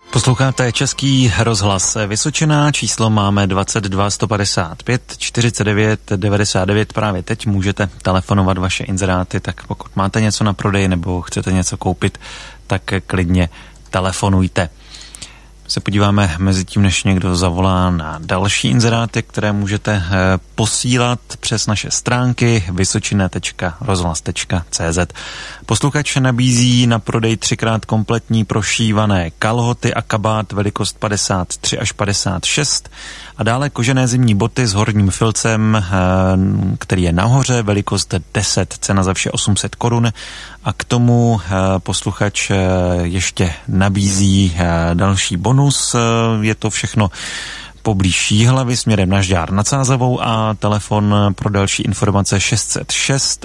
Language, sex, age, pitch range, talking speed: Czech, male, 30-49, 95-115 Hz, 115 wpm